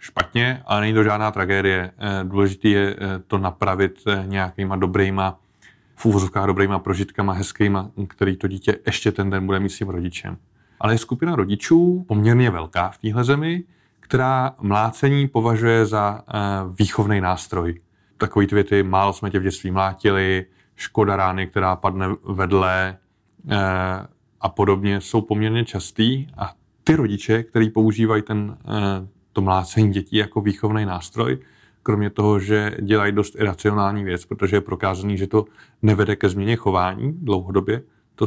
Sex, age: male, 20-39